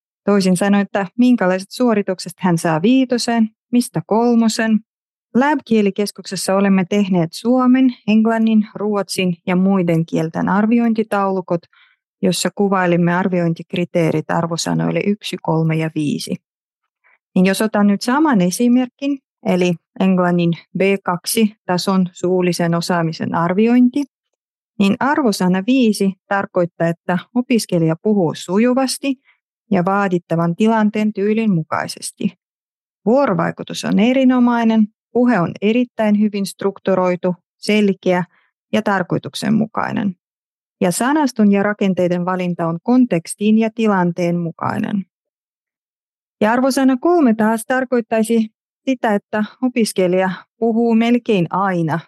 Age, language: 30-49, Finnish